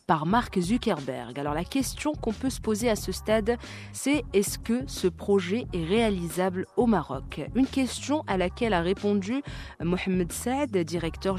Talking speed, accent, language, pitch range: 165 wpm, French, French, 165-210 Hz